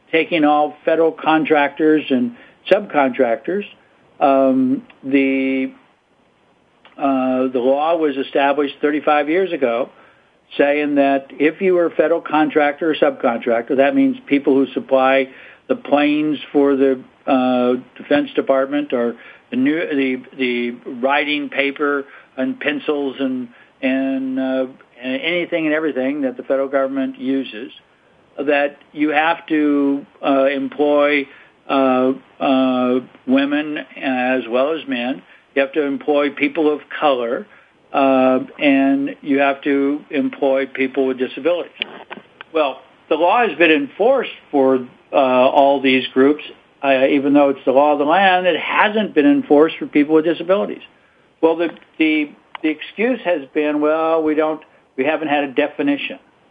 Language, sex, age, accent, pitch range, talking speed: English, male, 60-79, American, 135-155 Hz, 140 wpm